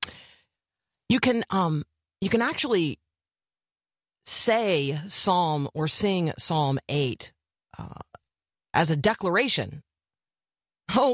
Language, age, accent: English, 40-59, American